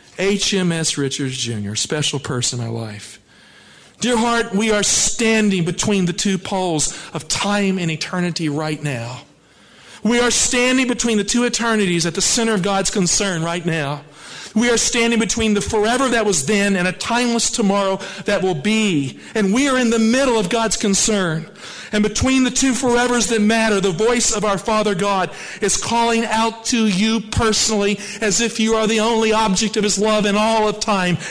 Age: 50-69